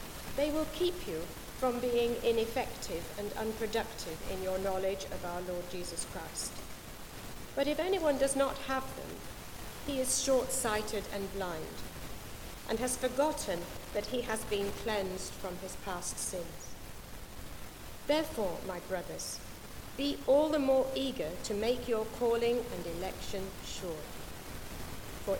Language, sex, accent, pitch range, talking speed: English, female, British, 200-260 Hz, 135 wpm